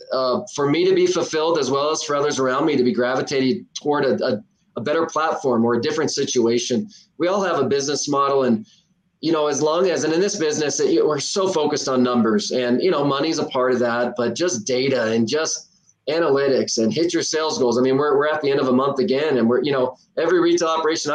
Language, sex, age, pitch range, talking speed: English, male, 20-39, 130-165 Hz, 240 wpm